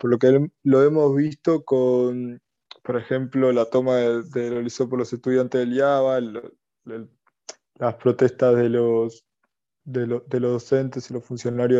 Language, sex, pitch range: Spanish, male, 125-140 Hz